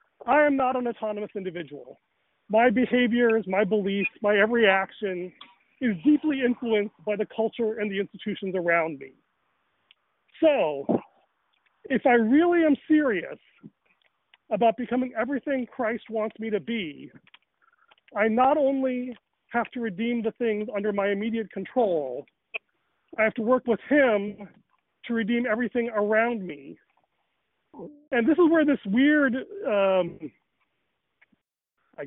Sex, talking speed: male, 130 wpm